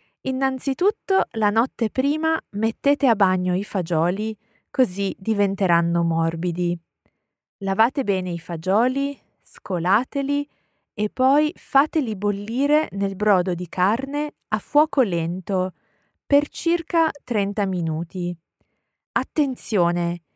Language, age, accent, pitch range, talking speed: English, 20-39, Italian, 185-270 Hz, 95 wpm